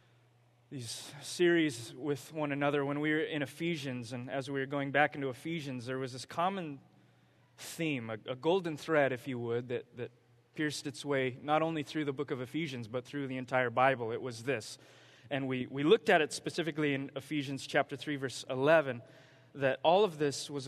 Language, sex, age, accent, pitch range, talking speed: English, male, 20-39, American, 130-155 Hz, 195 wpm